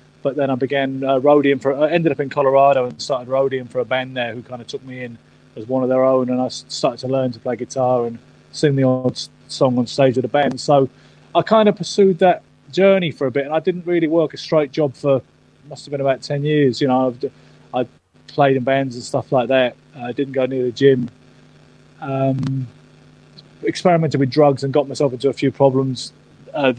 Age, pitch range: 30-49, 130-145 Hz